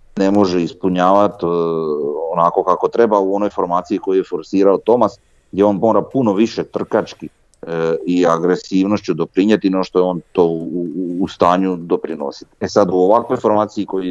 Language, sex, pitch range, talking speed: Croatian, male, 85-105 Hz, 170 wpm